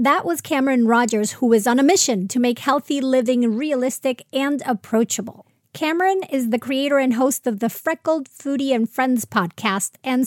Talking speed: 175 wpm